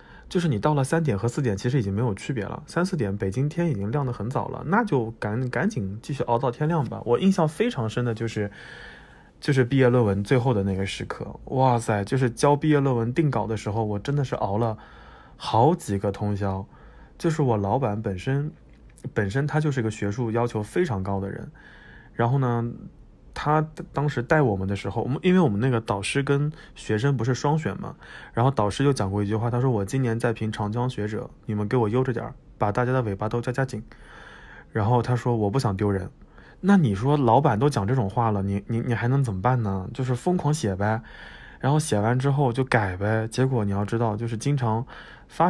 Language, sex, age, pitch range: Chinese, male, 20-39, 105-135 Hz